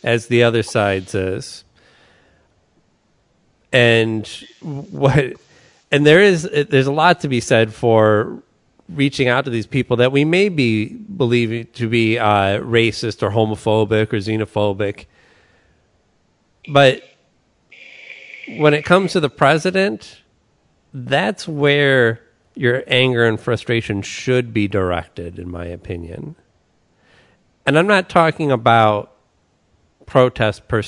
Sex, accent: male, American